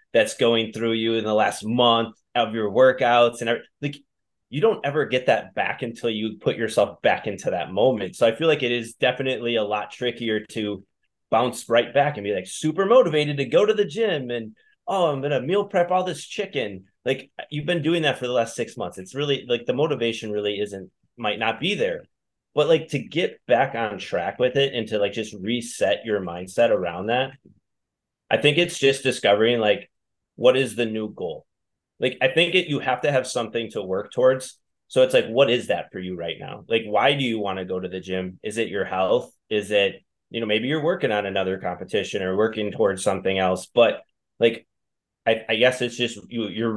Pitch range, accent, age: 105-135 Hz, American, 20-39